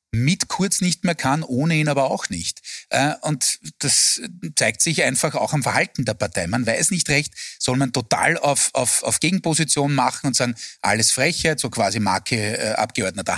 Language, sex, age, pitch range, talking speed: German, male, 30-49, 120-150 Hz, 185 wpm